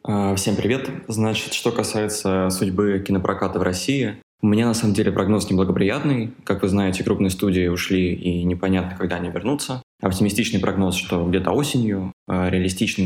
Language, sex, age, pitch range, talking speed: Russian, male, 20-39, 90-105 Hz, 150 wpm